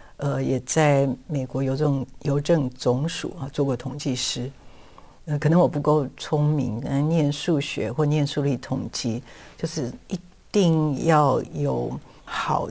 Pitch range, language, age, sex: 130-155 Hz, Chinese, 50-69, female